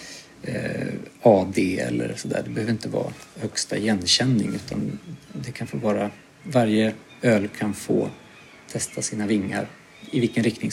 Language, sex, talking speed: Swedish, male, 140 wpm